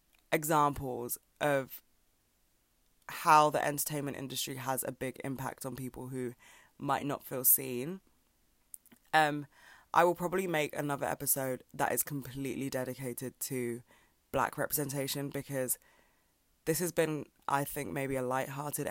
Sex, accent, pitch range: female, British, 130-150 Hz